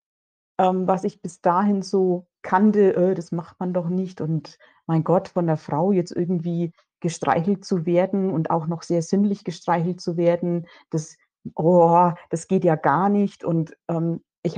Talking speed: 175 wpm